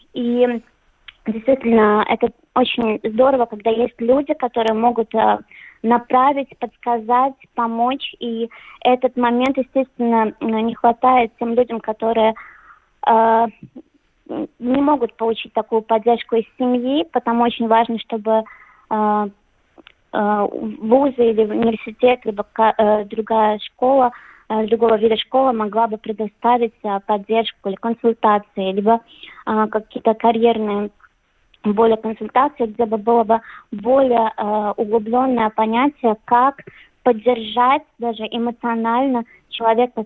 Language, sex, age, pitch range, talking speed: Russian, female, 20-39, 220-250 Hz, 100 wpm